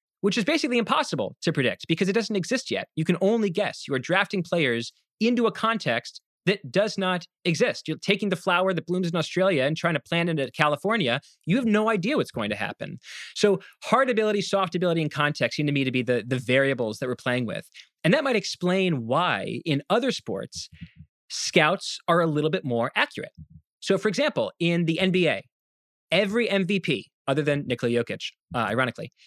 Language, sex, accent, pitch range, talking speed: English, male, American, 145-200 Hz, 195 wpm